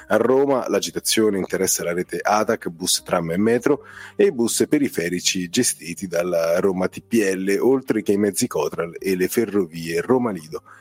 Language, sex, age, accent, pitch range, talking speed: Italian, male, 30-49, native, 95-125 Hz, 160 wpm